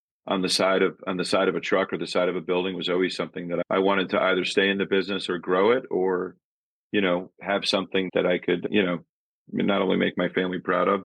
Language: English